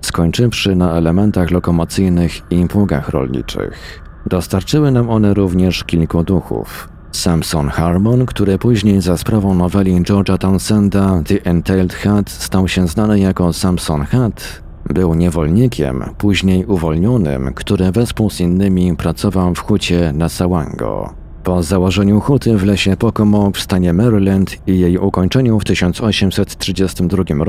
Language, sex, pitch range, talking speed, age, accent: Polish, male, 90-105 Hz, 125 wpm, 40-59, native